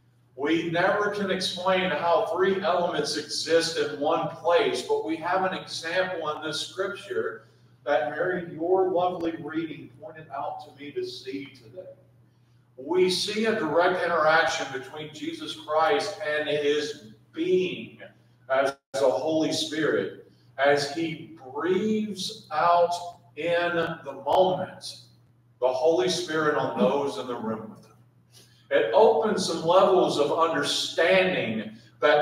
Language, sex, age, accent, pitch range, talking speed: English, male, 50-69, American, 140-185 Hz, 125 wpm